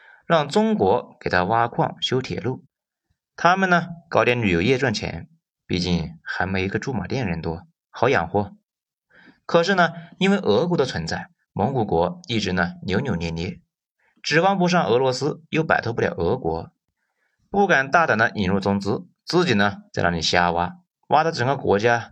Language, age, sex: Chinese, 30-49, male